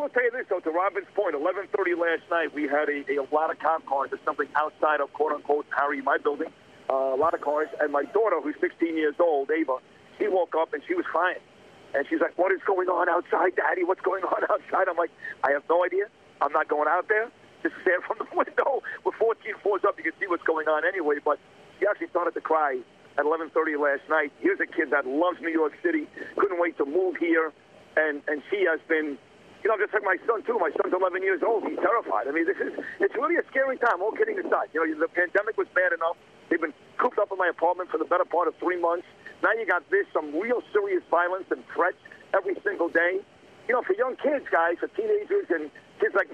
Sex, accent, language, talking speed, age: male, American, English, 240 wpm, 50-69